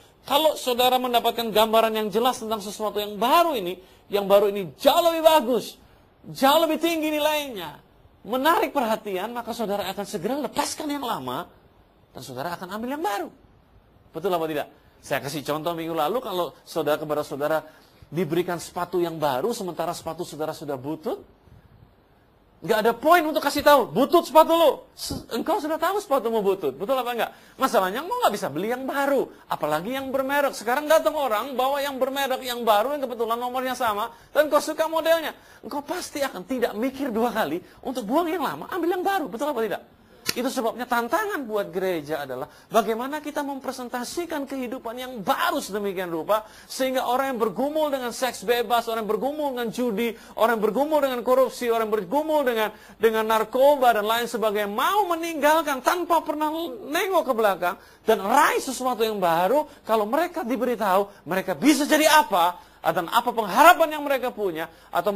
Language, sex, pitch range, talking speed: Indonesian, male, 210-295 Hz, 170 wpm